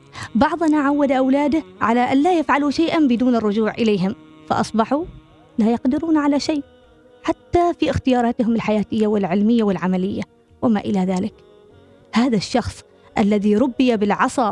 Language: Arabic